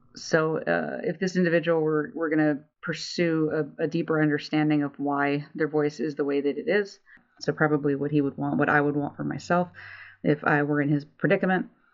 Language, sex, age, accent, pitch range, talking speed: English, female, 30-49, American, 145-170 Hz, 210 wpm